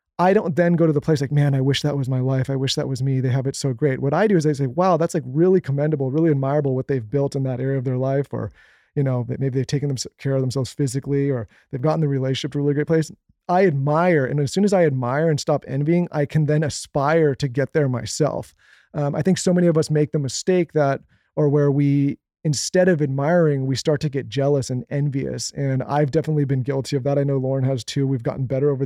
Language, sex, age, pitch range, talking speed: English, male, 30-49, 135-160 Hz, 260 wpm